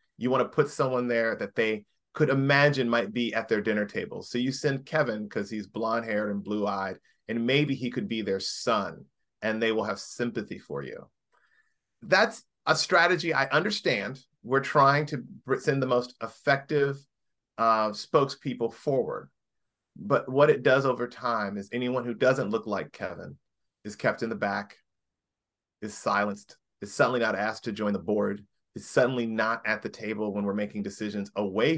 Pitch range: 105-130 Hz